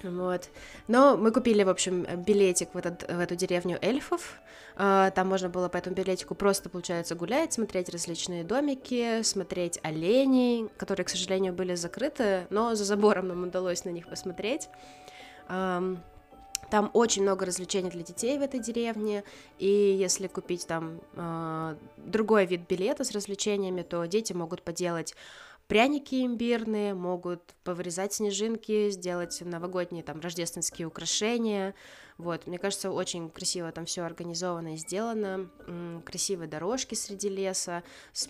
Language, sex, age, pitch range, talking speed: Russian, female, 20-39, 175-210 Hz, 135 wpm